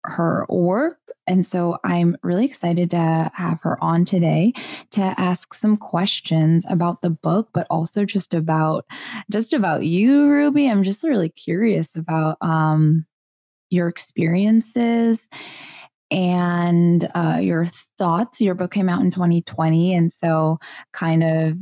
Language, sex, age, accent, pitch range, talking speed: English, female, 10-29, American, 175-230 Hz, 135 wpm